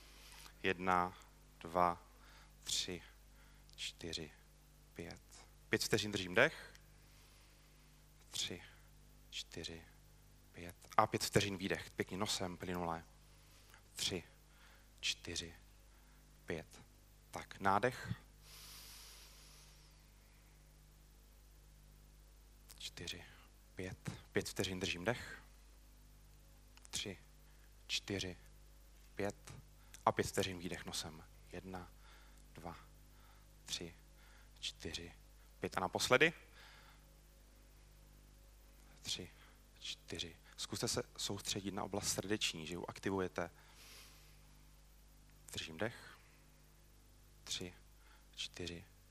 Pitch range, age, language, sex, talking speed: 80-105 Hz, 30-49, Czech, male, 70 wpm